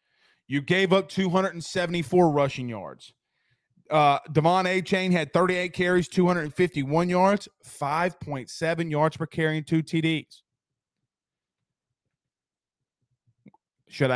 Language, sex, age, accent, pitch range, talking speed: English, male, 30-49, American, 155-195 Hz, 100 wpm